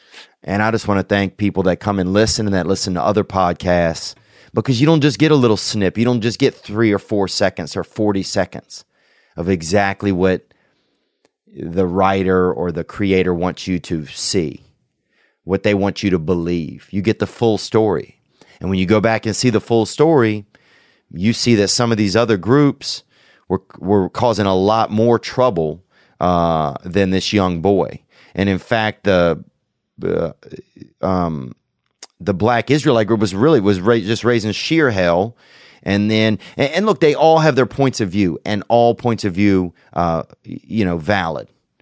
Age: 30-49